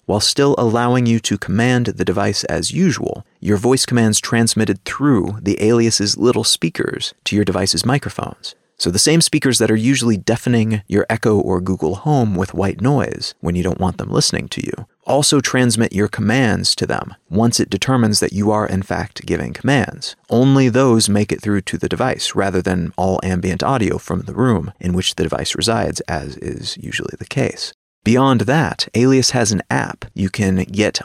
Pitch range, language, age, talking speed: 95-120 Hz, English, 30-49, 190 wpm